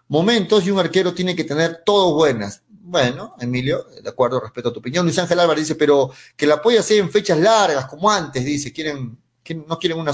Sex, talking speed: male, 205 wpm